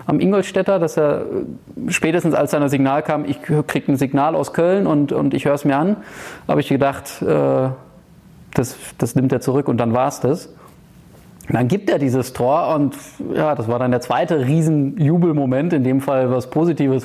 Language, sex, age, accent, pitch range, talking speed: German, male, 20-39, German, 130-155 Hz, 190 wpm